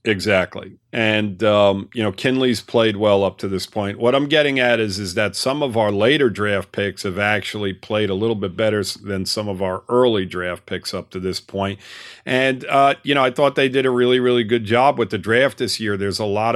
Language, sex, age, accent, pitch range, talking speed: English, male, 50-69, American, 105-125 Hz, 230 wpm